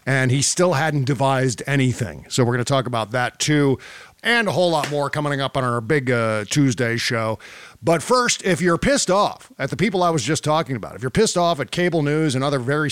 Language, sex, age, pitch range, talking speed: English, male, 40-59, 135-175 Hz, 235 wpm